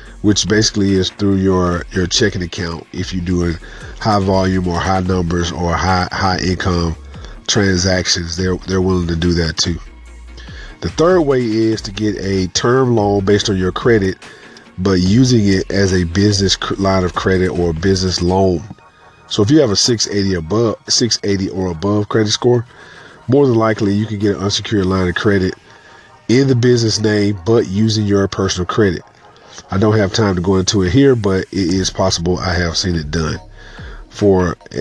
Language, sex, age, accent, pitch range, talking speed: English, male, 40-59, American, 95-115 Hz, 180 wpm